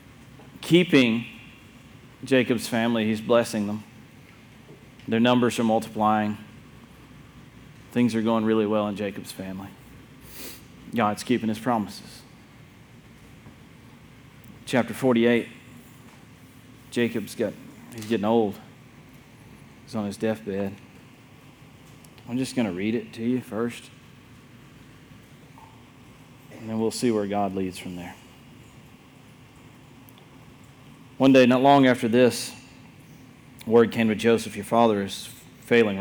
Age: 30-49